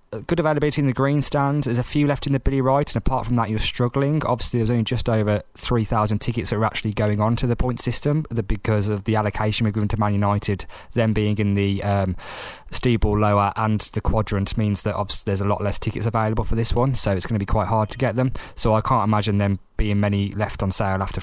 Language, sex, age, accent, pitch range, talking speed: English, male, 20-39, British, 100-120 Hz, 250 wpm